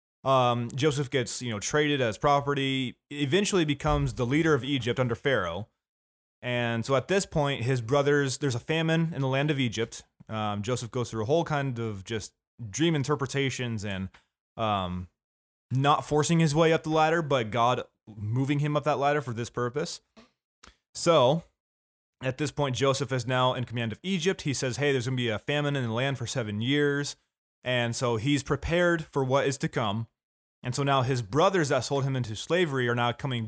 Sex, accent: male, American